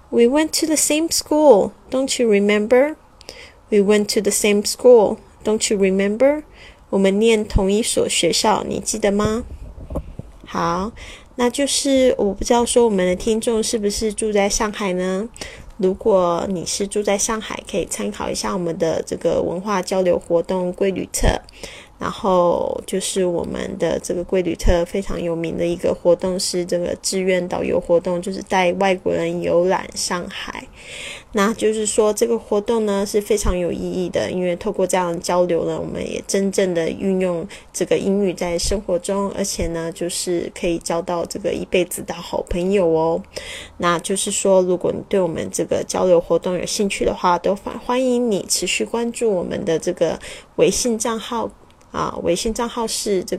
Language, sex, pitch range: Chinese, female, 180-225 Hz